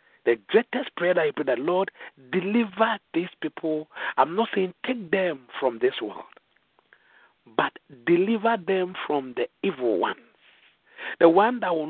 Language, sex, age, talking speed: English, male, 50-69, 150 wpm